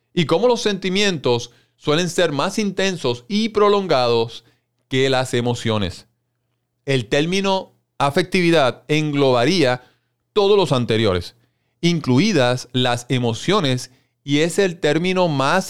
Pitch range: 120-165 Hz